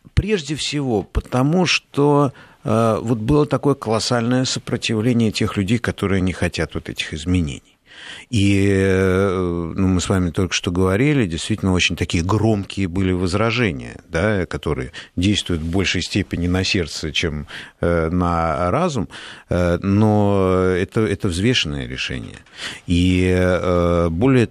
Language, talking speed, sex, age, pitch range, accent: Russian, 120 wpm, male, 50-69, 85-105 Hz, native